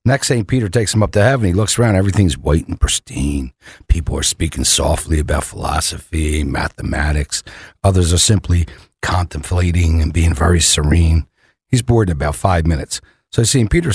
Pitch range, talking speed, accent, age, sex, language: 90-125 Hz, 170 wpm, American, 60-79, male, English